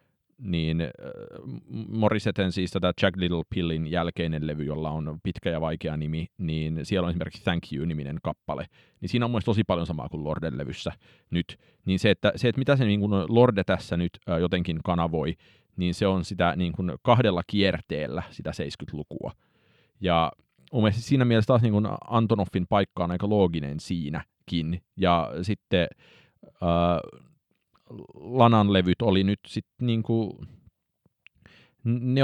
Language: Finnish